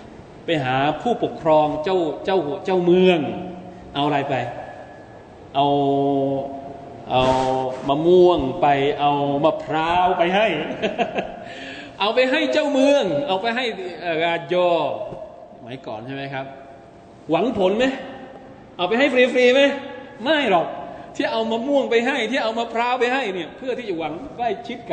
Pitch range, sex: 145-230 Hz, male